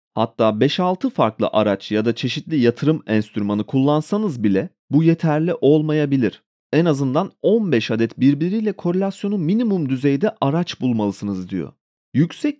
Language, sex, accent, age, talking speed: Turkish, male, native, 40-59, 125 wpm